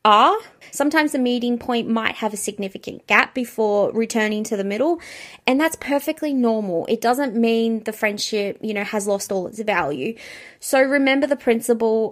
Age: 20-39